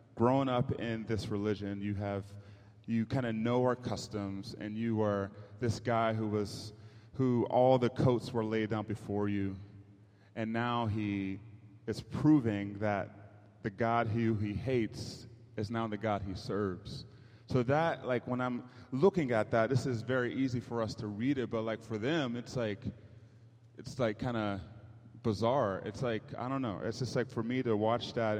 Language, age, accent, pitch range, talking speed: English, 30-49, American, 105-120 Hz, 185 wpm